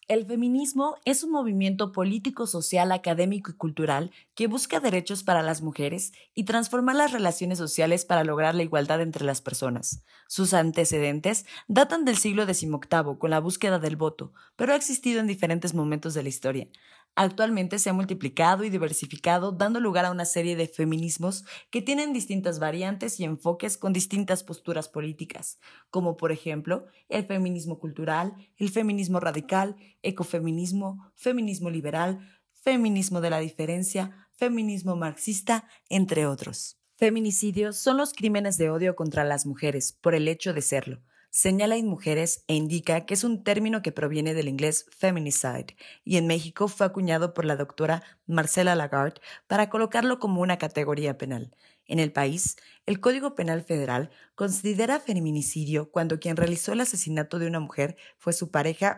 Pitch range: 155-200 Hz